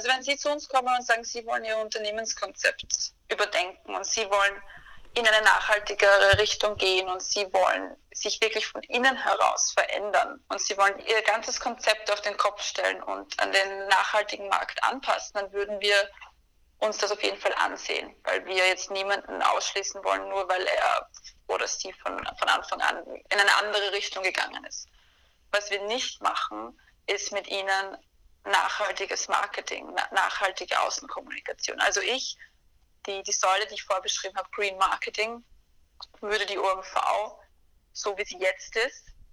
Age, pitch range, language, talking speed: 20-39, 195-220 Hz, German, 160 wpm